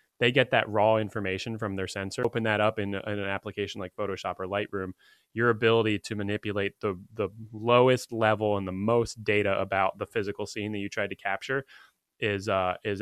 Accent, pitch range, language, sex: American, 100-120 Hz, English, male